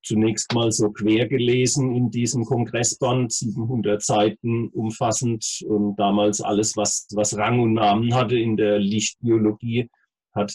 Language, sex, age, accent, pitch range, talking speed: German, male, 40-59, German, 110-125 Hz, 135 wpm